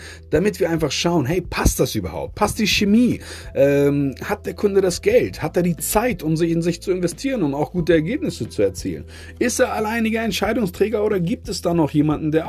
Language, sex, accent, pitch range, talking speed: German, male, German, 135-190 Hz, 215 wpm